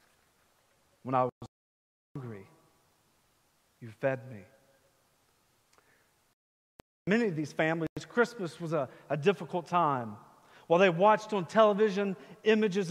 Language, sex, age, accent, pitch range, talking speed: English, male, 40-59, American, 155-190 Hz, 105 wpm